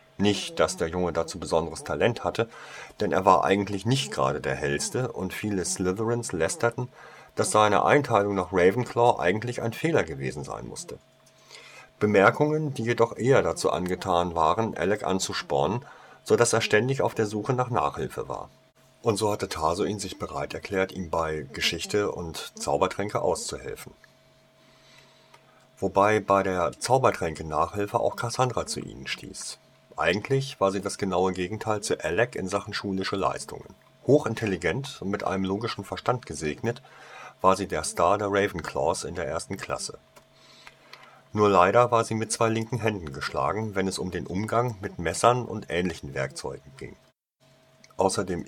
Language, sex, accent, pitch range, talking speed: German, male, German, 95-115 Hz, 150 wpm